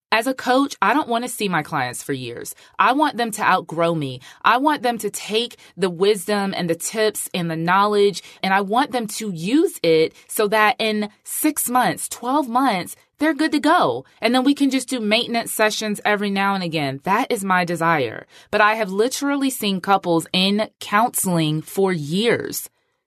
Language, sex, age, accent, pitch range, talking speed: English, female, 20-39, American, 185-240 Hz, 195 wpm